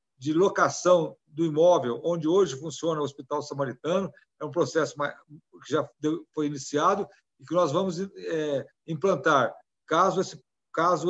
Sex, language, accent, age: male, Portuguese, Brazilian, 60-79